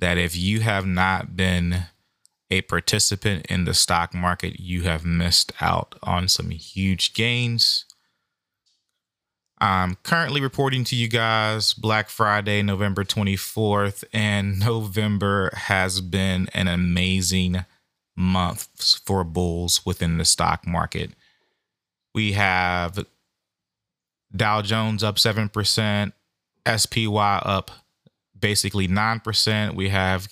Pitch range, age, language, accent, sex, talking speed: 95-110 Hz, 20-39, English, American, male, 110 wpm